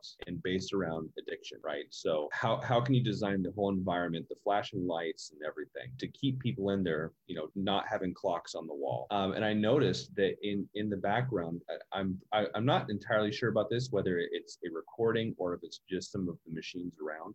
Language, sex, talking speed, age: English, male, 220 wpm, 30-49